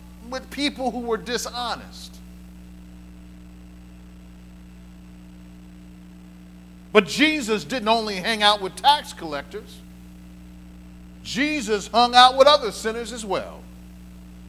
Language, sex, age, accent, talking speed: English, male, 50-69, American, 90 wpm